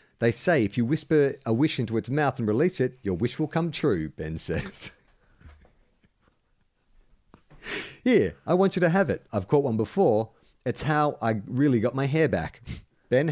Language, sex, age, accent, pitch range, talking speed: English, male, 40-59, Australian, 95-125 Hz, 180 wpm